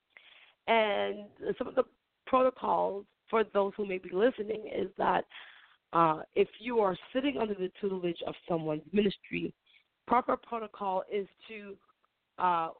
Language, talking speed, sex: English, 135 wpm, female